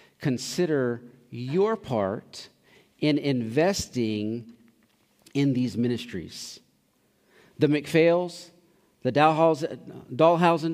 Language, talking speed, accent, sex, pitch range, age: English, 75 wpm, American, male, 115-145 Hz, 40-59